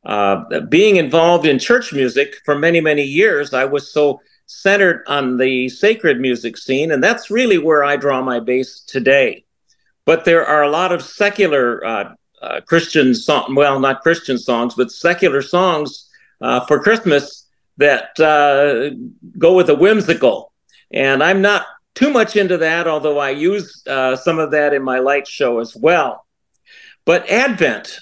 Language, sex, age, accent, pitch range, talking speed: English, male, 50-69, American, 135-180 Hz, 165 wpm